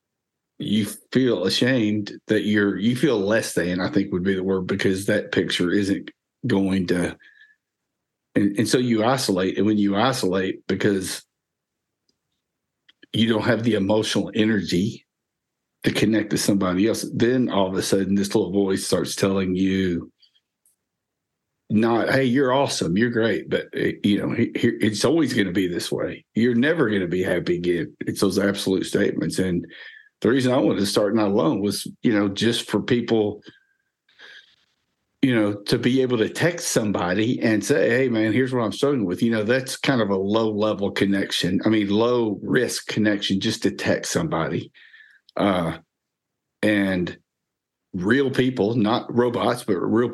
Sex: male